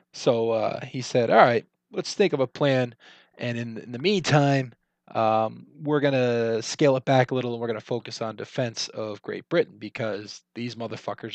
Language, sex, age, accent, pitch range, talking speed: English, male, 20-39, American, 115-140 Hz, 200 wpm